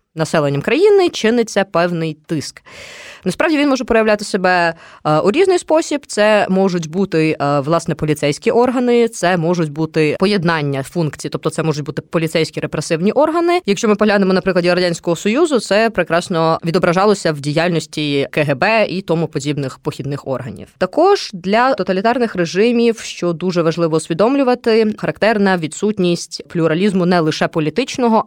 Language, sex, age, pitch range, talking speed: Ukrainian, female, 20-39, 160-210 Hz, 135 wpm